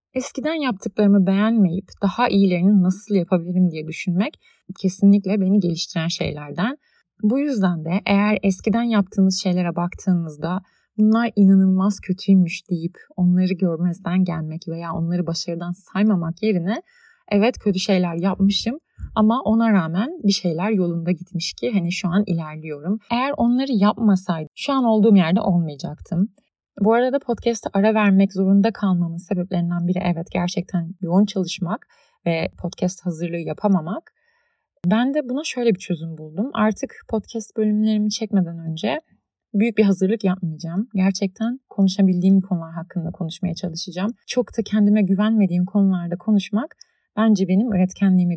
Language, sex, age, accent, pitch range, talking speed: Turkish, female, 30-49, native, 175-215 Hz, 130 wpm